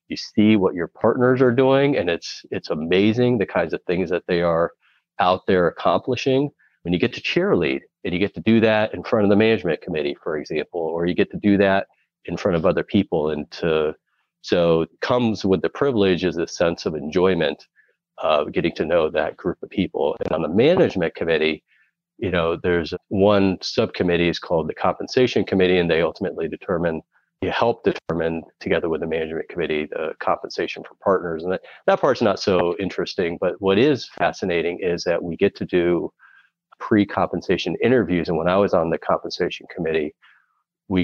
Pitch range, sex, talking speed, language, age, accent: 85-110 Hz, male, 195 wpm, English, 40-59, American